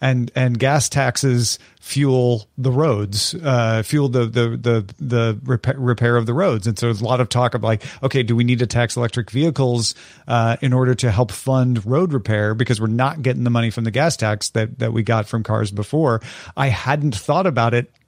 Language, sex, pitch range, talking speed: English, male, 115-145 Hz, 215 wpm